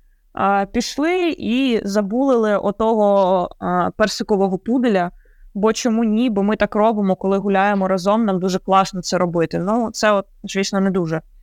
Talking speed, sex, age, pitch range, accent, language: 135 wpm, female, 20-39, 190-235 Hz, native, Ukrainian